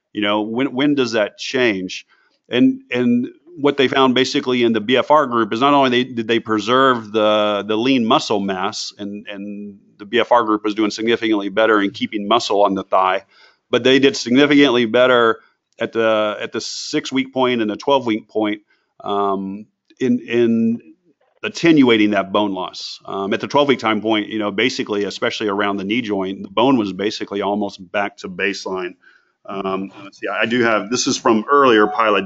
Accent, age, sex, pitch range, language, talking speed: American, 40-59, male, 105-125 Hz, English, 185 wpm